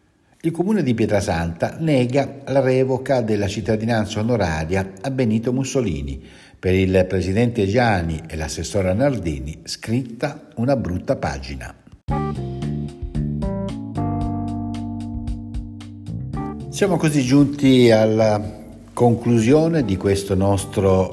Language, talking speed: Italian, 90 wpm